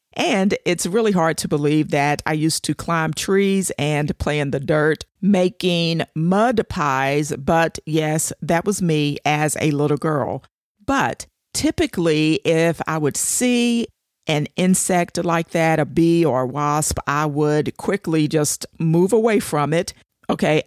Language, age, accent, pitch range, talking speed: English, 50-69, American, 150-190 Hz, 155 wpm